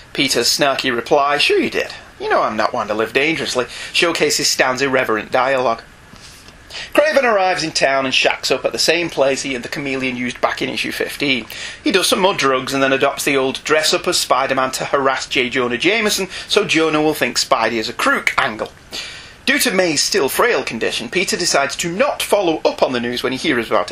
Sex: male